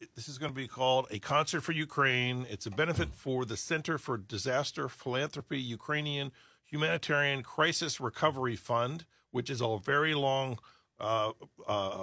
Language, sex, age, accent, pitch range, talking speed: English, male, 50-69, American, 120-150 Hz, 150 wpm